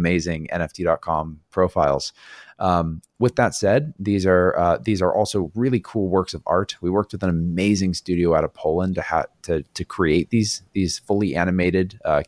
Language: English